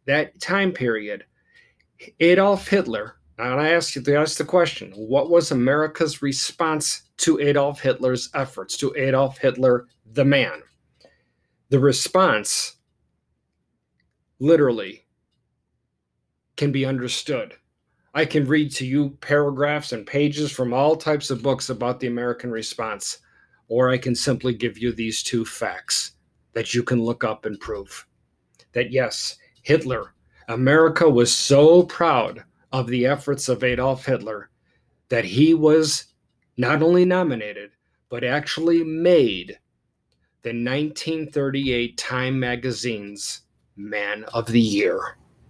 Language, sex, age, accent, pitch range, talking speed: English, male, 40-59, American, 115-150 Hz, 125 wpm